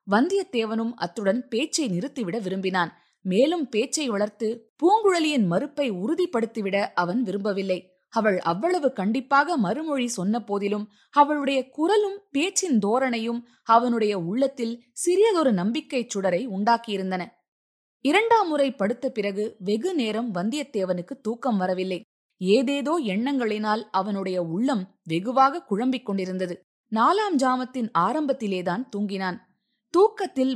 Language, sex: Tamil, female